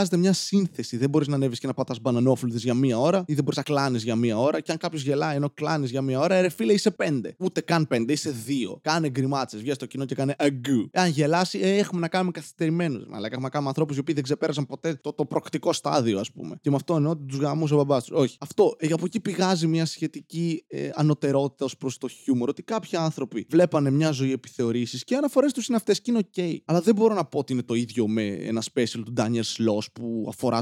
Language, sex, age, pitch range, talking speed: Greek, male, 20-39, 120-155 Hz, 240 wpm